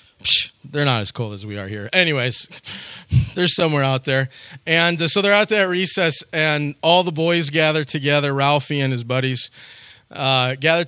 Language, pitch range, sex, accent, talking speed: English, 140-180 Hz, male, American, 175 wpm